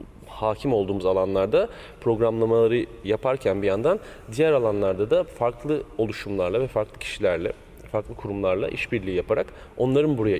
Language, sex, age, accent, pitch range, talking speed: Turkish, male, 30-49, native, 95-120 Hz, 120 wpm